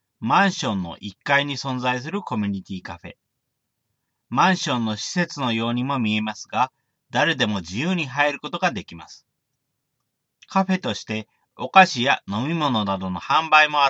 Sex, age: male, 40-59